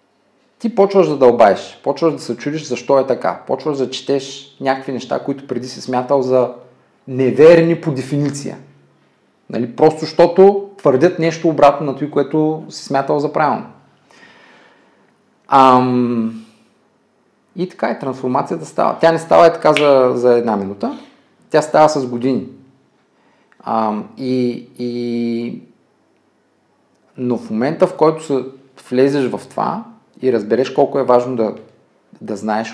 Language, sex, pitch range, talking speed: Bulgarian, male, 125-155 Hz, 140 wpm